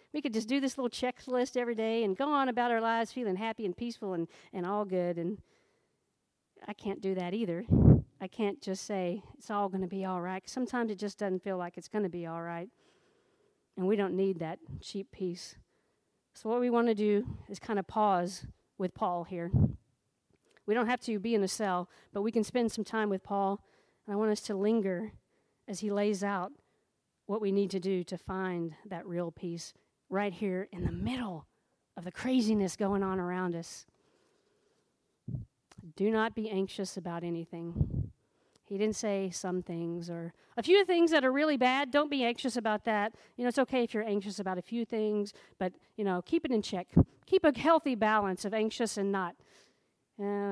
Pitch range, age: 185-230 Hz, 50-69